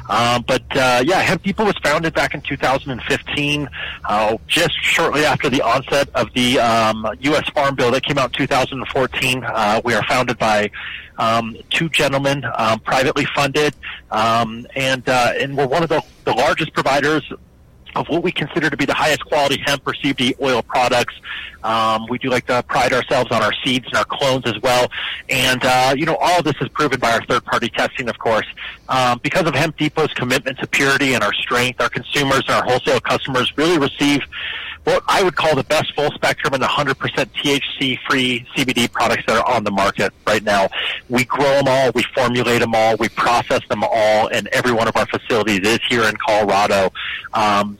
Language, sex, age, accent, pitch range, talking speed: English, male, 30-49, American, 120-145 Hz, 200 wpm